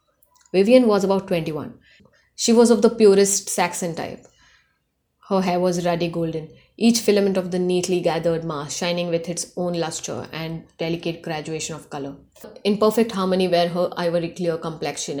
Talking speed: 160 wpm